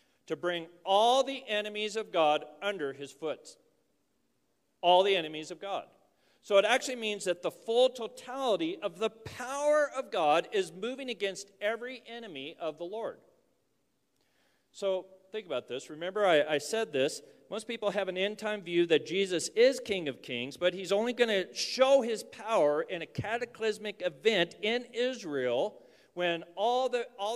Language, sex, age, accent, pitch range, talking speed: English, male, 40-59, American, 185-240 Hz, 165 wpm